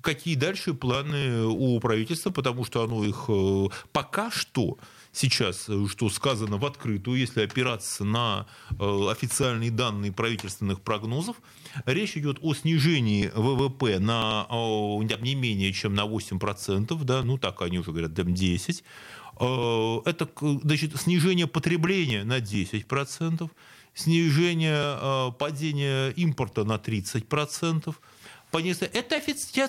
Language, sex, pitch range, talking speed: Russian, male, 110-170 Hz, 110 wpm